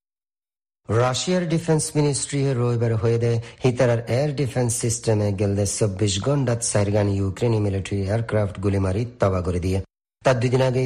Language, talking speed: Bengali, 135 wpm